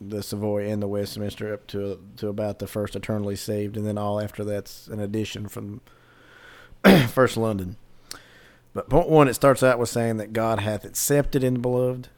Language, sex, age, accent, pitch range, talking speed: English, male, 40-59, American, 105-125 Hz, 190 wpm